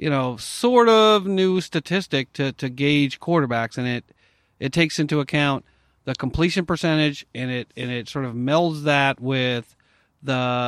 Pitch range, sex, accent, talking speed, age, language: 130-155 Hz, male, American, 165 wpm, 40-59, English